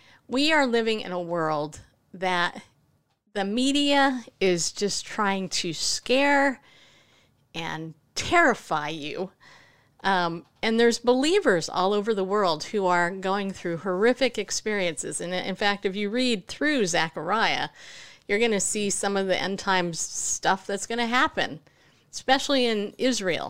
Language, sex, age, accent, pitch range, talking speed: English, female, 50-69, American, 175-235 Hz, 145 wpm